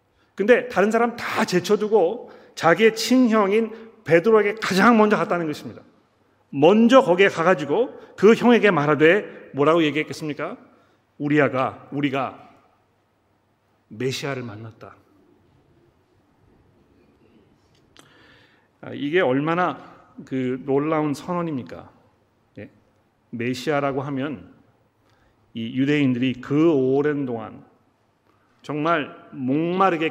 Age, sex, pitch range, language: 40-59, male, 130-195 Hz, Korean